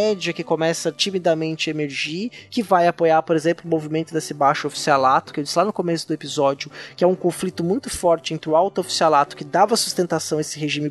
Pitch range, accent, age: 155-205 Hz, Brazilian, 20-39